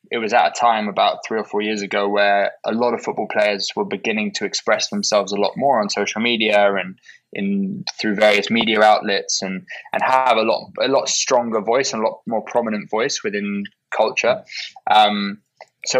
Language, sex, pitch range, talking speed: English, male, 100-120 Hz, 200 wpm